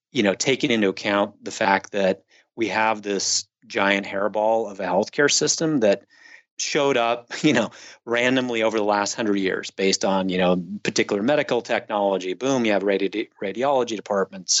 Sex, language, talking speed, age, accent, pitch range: male, English, 170 wpm, 30-49, American, 95-115 Hz